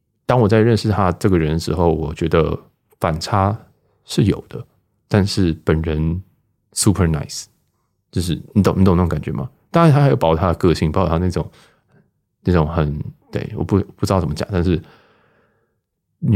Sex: male